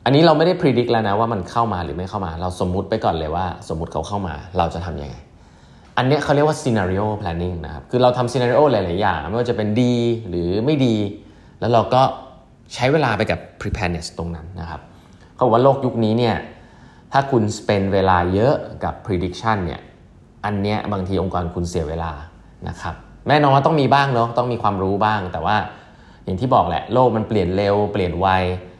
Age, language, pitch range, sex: 20-39, English, 90-115 Hz, male